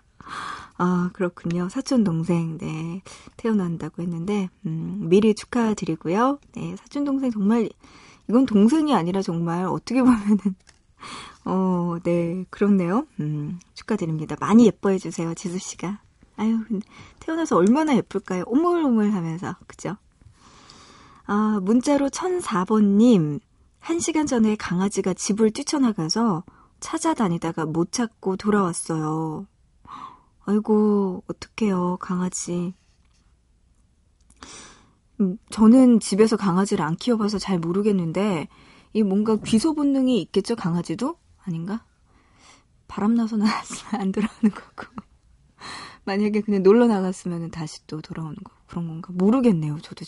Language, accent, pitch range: Korean, native, 170-220 Hz